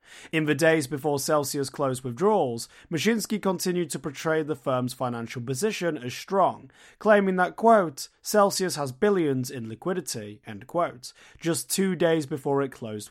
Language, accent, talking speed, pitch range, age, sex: English, British, 150 wpm, 130-170 Hz, 30-49, male